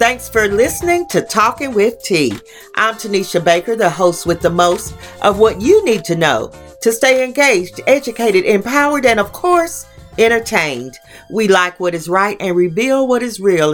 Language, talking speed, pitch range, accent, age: English, 175 wpm, 170-225 Hz, American, 40-59